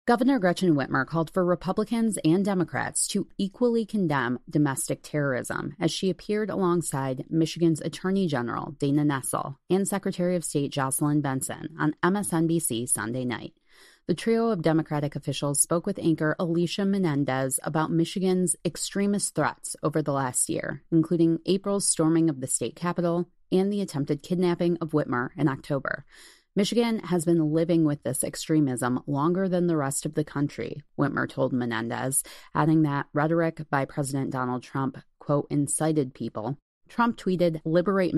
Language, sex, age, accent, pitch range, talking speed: English, female, 30-49, American, 140-175 Hz, 150 wpm